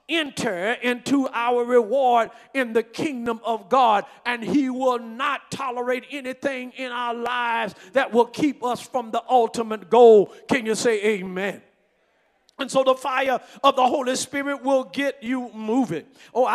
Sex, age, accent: male, 40-59, American